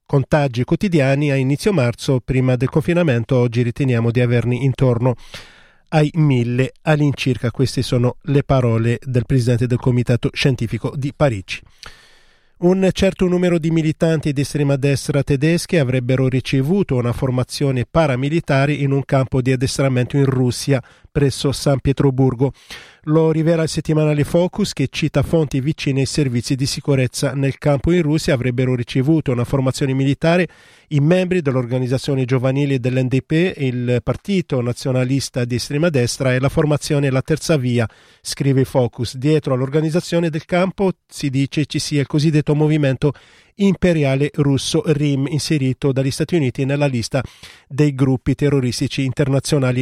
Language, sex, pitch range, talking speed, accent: Italian, male, 130-155 Hz, 140 wpm, native